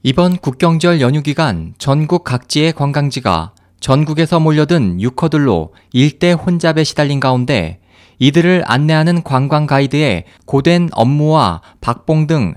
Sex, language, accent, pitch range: male, Korean, native, 120-165 Hz